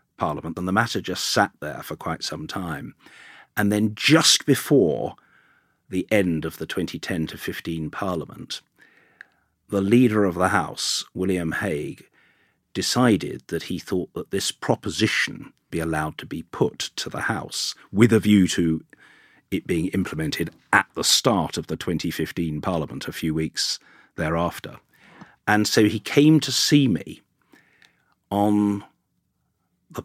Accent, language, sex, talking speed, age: British, English, male, 145 wpm, 50-69